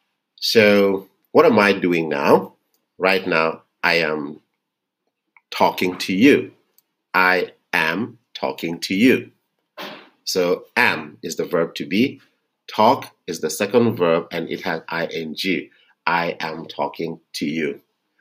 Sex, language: male, English